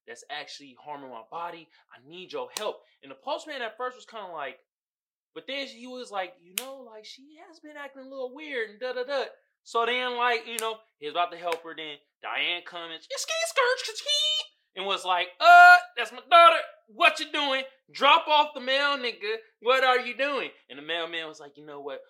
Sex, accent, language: male, American, English